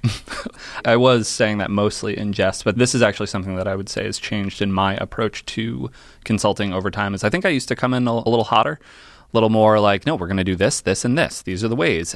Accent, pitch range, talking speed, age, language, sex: American, 95-110 Hz, 260 wpm, 20-39, English, male